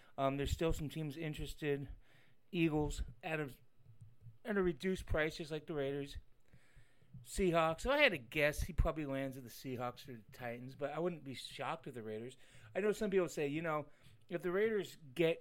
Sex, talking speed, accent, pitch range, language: male, 205 wpm, American, 125-160 Hz, English